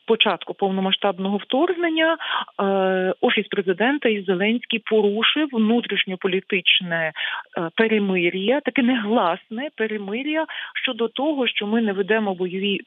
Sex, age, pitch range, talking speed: female, 40-59, 185-245 Hz, 95 wpm